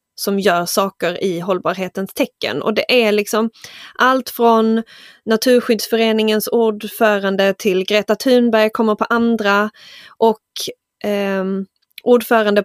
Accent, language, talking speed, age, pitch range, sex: native, Swedish, 110 wpm, 20-39, 210-275 Hz, female